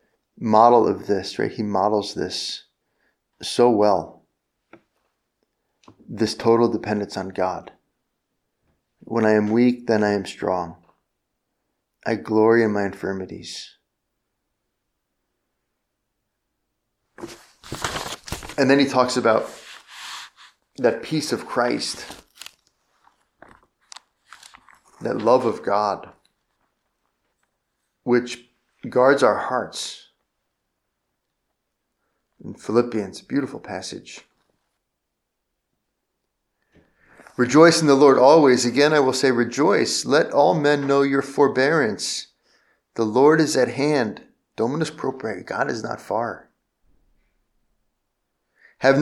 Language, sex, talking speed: English, male, 95 wpm